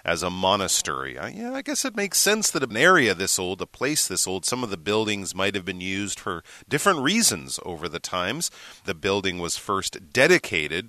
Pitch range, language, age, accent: 95-145 Hz, Chinese, 30-49, American